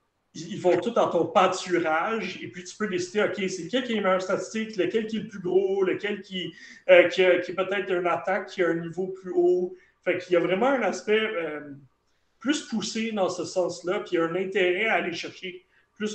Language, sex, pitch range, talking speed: French, male, 175-210 Hz, 225 wpm